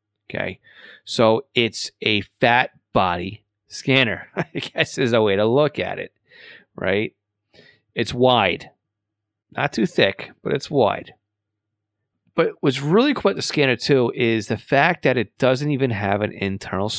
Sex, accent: male, American